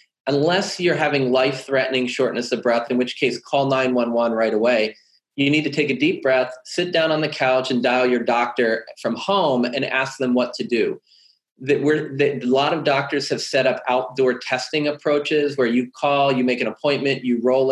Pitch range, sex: 125-145 Hz, male